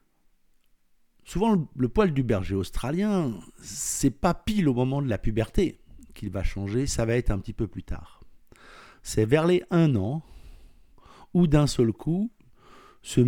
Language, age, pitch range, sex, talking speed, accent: French, 60-79, 100-155 Hz, male, 165 wpm, French